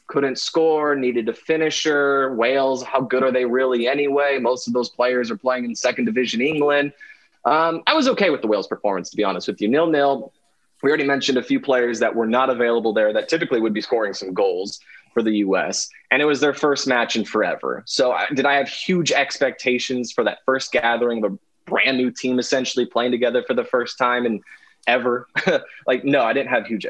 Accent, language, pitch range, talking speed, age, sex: American, English, 120-145 Hz, 215 wpm, 20-39, male